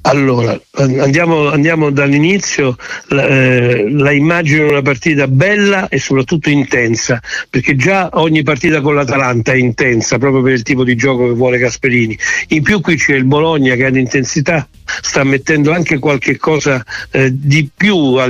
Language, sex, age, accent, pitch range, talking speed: Italian, male, 60-79, native, 130-155 Hz, 160 wpm